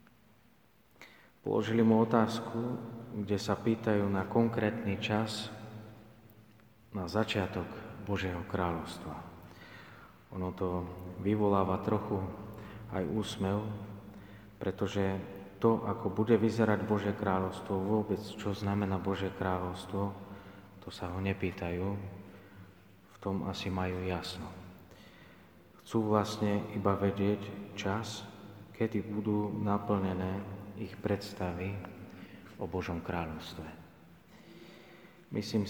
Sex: male